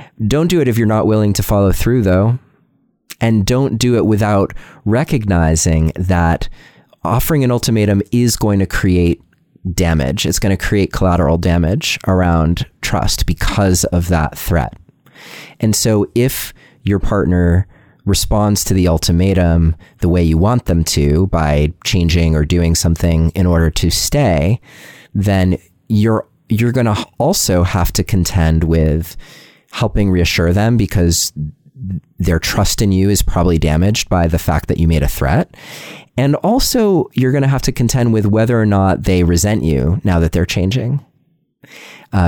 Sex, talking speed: male, 160 wpm